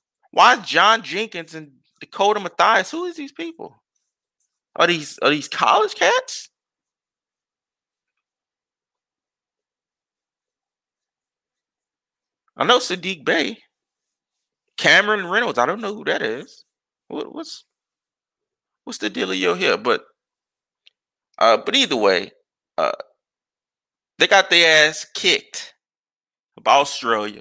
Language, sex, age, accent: English, male, 30-49, American